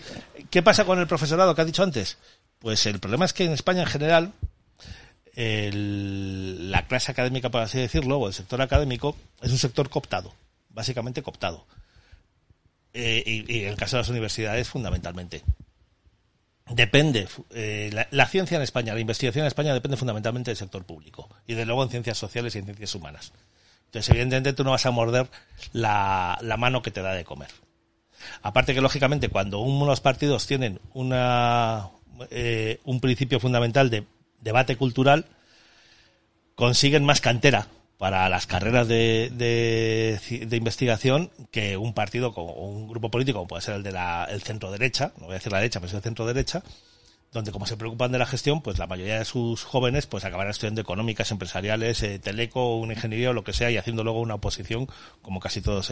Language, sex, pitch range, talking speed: Spanish, male, 100-130 Hz, 180 wpm